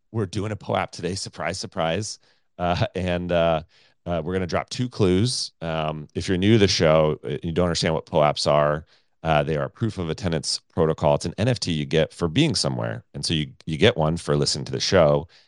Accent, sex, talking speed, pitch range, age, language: American, male, 220 wpm, 70-95 Hz, 30-49, English